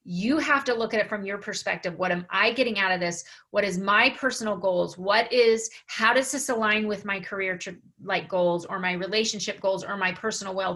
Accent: American